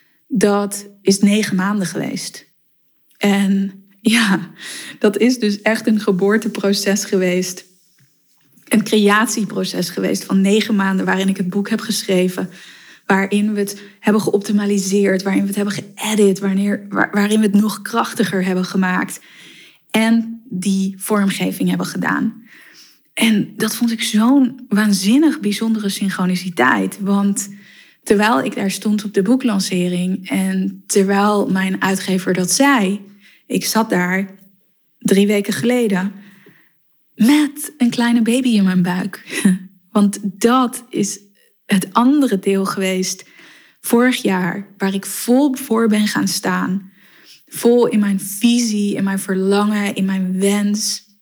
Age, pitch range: 20-39, 195-220 Hz